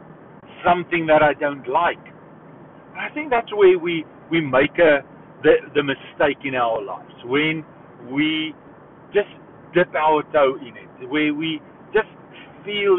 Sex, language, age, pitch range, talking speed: male, English, 50-69, 155-205 Hz, 145 wpm